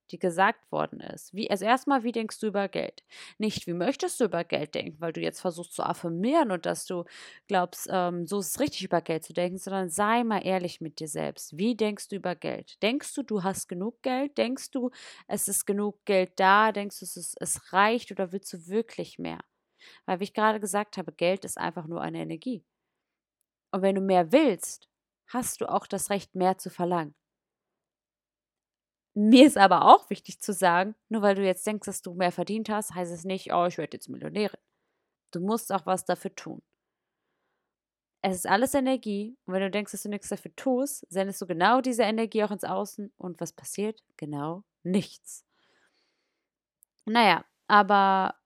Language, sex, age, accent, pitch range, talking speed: German, female, 30-49, German, 180-215 Hz, 195 wpm